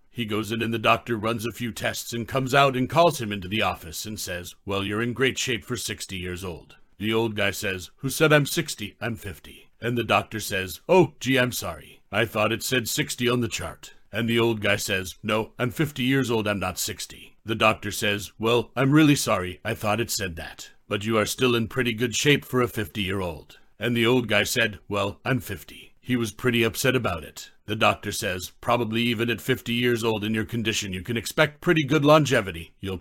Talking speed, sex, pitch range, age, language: 225 wpm, male, 100-125 Hz, 60-79, English